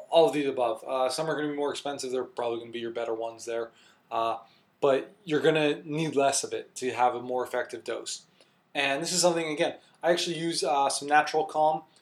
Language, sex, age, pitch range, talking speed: English, male, 20-39, 135-160 Hz, 240 wpm